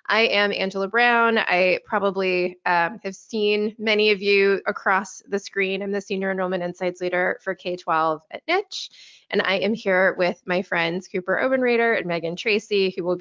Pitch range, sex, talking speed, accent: 175-215 Hz, female, 175 wpm, American